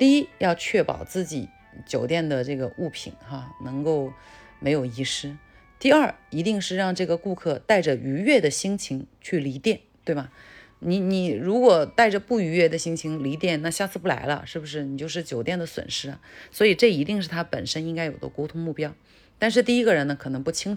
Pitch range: 135-185 Hz